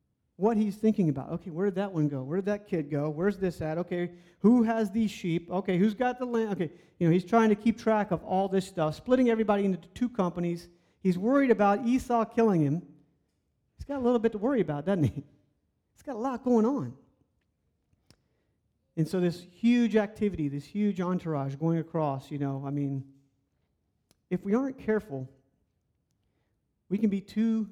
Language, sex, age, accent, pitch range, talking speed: English, male, 40-59, American, 145-205 Hz, 195 wpm